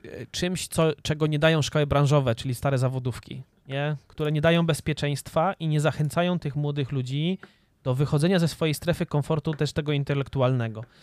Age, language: 20-39, Polish